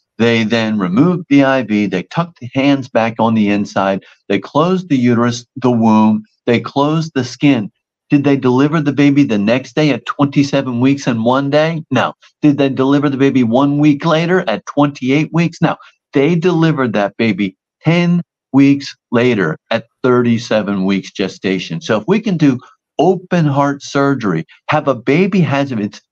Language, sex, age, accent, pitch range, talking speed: English, male, 50-69, American, 115-155 Hz, 170 wpm